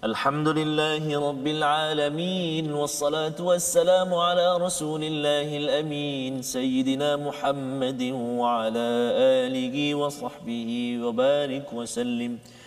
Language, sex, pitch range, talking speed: Malayalam, male, 145-185 Hz, 80 wpm